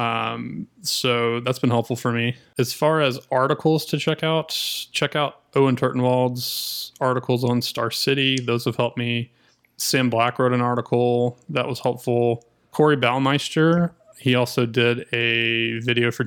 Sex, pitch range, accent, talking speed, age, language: male, 120-135 Hz, American, 155 wpm, 20-39, English